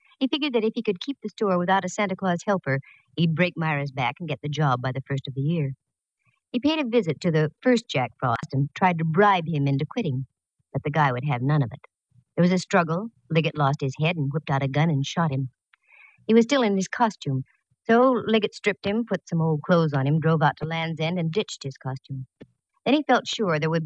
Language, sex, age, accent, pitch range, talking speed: English, male, 50-69, American, 145-200 Hz, 250 wpm